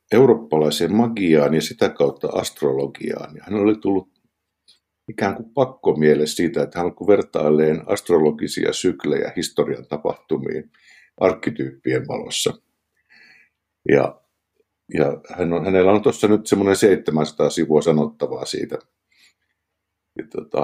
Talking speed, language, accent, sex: 110 wpm, Finnish, native, male